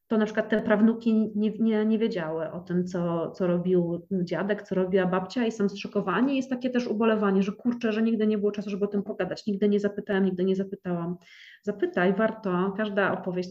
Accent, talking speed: native, 205 wpm